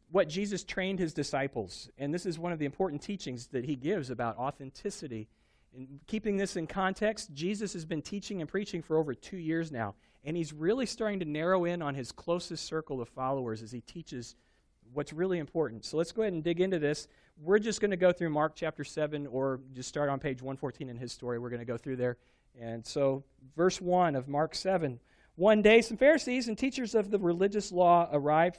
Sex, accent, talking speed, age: male, American, 215 wpm, 40-59